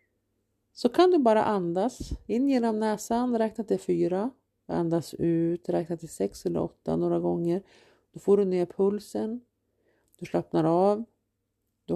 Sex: female